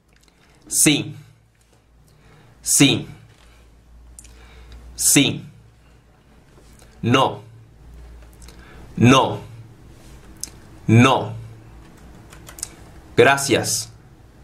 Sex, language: male, Spanish